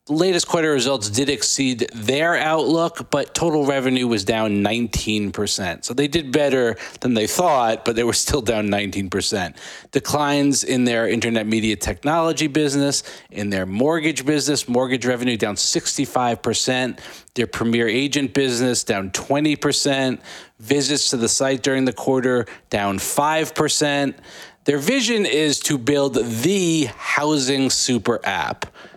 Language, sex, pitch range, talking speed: English, male, 110-145 Hz, 135 wpm